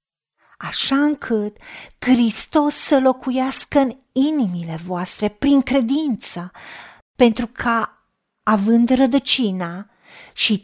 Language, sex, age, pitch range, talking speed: Romanian, female, 40-59, 220-290 Hz, 85 wpm